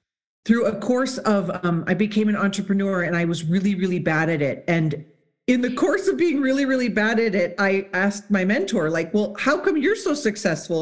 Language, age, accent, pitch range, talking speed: English, 40-59, American, 175-230 Hz, 215 wpm